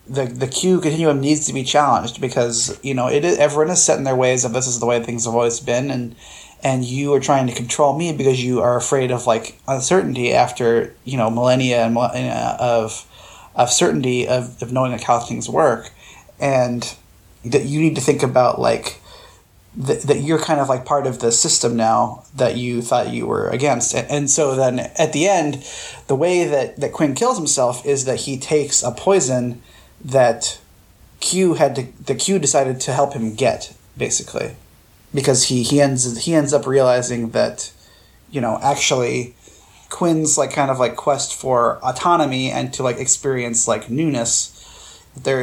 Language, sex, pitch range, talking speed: English, male, 120-145 Hz, 185 wpm